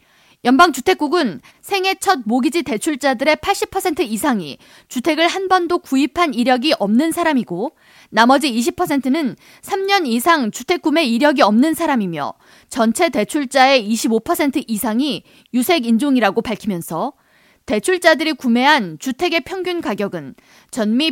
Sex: female